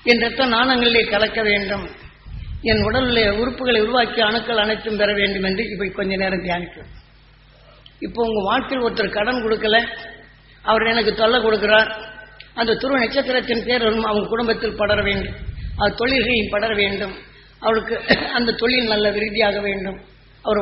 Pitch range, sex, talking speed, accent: 200-235 Hz, female, 135 wpm, native